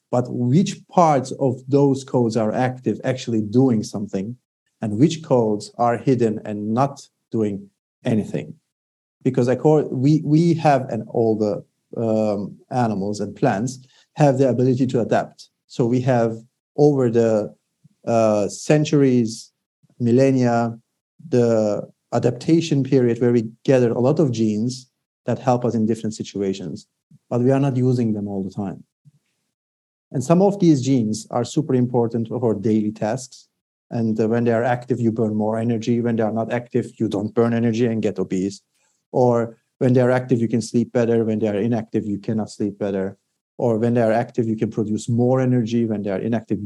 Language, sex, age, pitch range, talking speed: English, male, 50-69, 110-130 Hz, 175 wpm